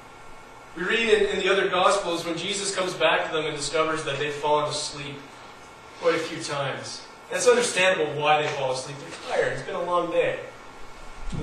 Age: 30-49